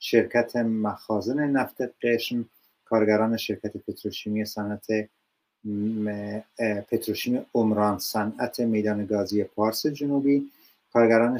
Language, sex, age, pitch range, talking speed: Persian, male, 30-49, 105-115 Hz, 90 wpm